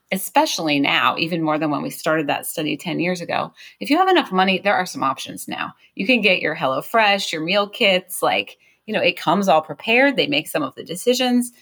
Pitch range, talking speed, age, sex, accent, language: 160-220 Hz, 225 wpm, 30-49, female, American, English